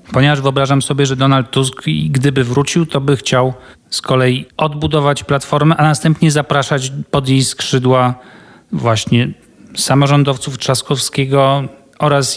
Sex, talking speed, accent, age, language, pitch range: male, 120 wpm, native, 40-59, Polish, 130-145 Hz